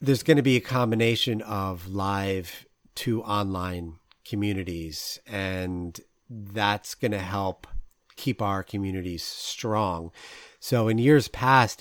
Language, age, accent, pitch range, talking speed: English, 30-49, American, 95-120 Hz, 120 wpm